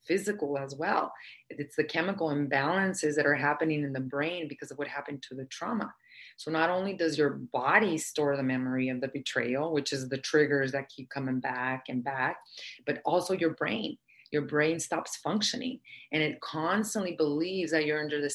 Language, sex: English, female